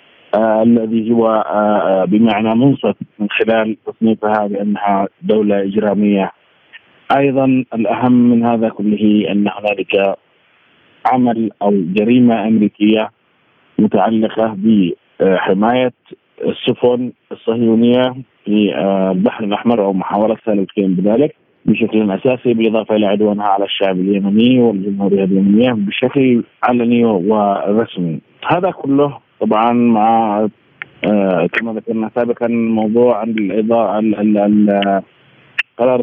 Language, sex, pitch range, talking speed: Arabic, male, 105-120 Hz, 95 wpm